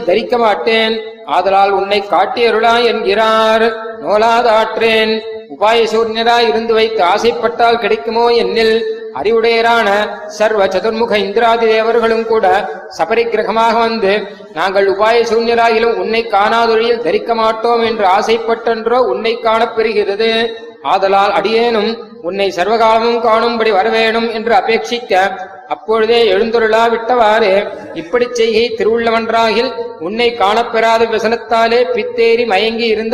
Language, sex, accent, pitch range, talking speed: Tamil, male, native, 220-230 Hz, 65 wpm